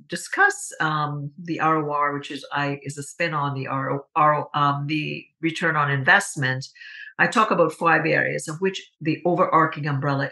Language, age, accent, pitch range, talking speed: English, 50-69, American, 145-175 Hz, 155 wpm